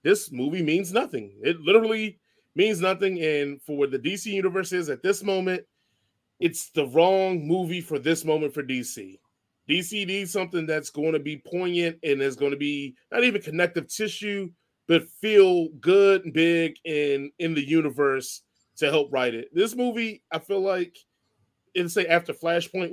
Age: 20-39